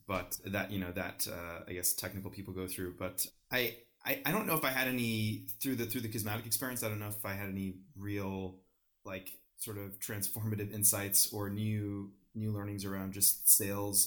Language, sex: English, male